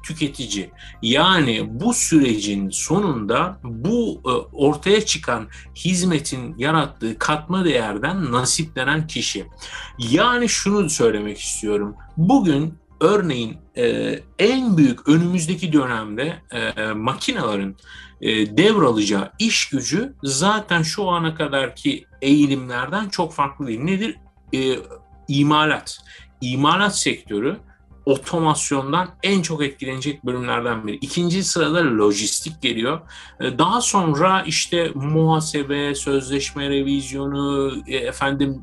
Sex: male